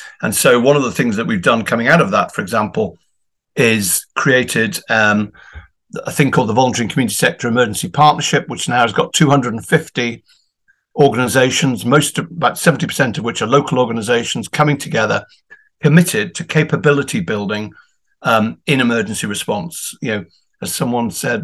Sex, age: male, 50-69